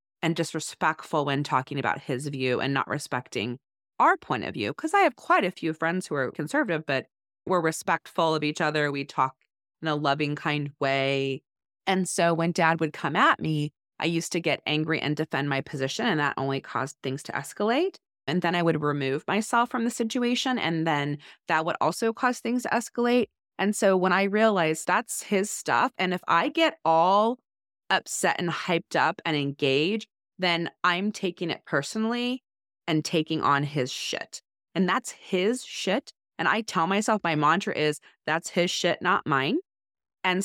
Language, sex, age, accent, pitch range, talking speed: English, female, 30-49, American, 145-200 Hz, 185 wpm